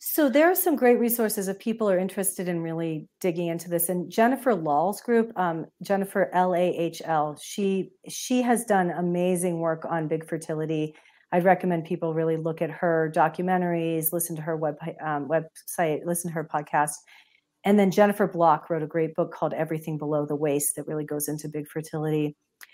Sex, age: female, 40-59